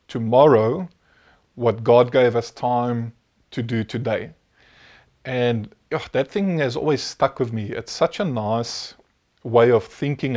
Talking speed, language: 140 wpm, English